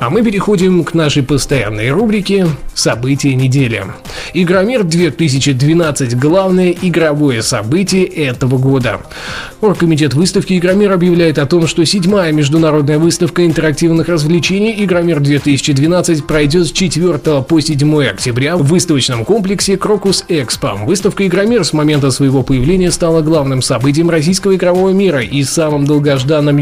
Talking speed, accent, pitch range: 125 wpm, native, 145-180 Hz